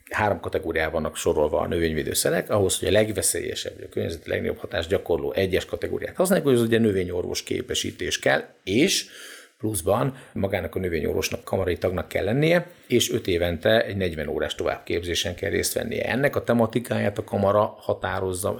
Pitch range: 100-135 Hz